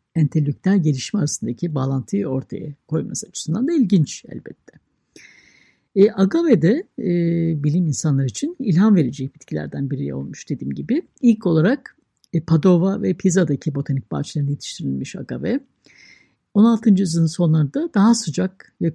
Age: 60-79